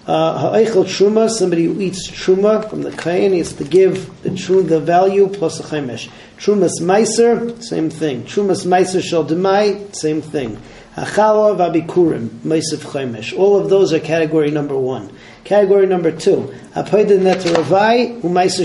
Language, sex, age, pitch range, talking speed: English, male, 40-59, 155-195 Hz, 160 wpm